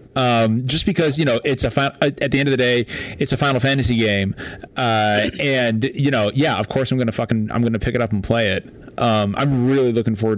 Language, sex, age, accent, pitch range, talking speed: English, male, 30-49, American, 110-150 Hz, 235 wpm